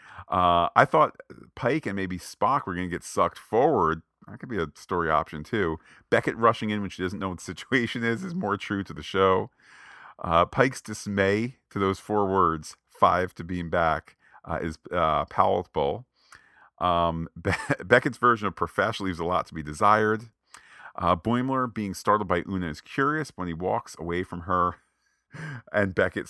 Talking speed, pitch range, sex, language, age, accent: 180 wpm, 85-110 Hz, male, English, 40-59, American